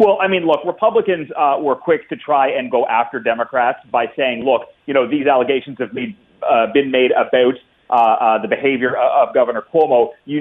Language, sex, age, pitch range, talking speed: English, male, 30-49, 120-170 Hz, 195 wpm